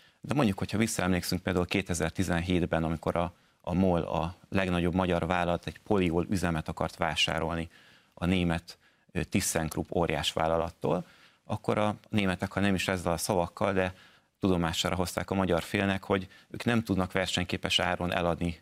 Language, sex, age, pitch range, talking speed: Hungarian, male, 30-49, 85-100 Hz, 150 wpm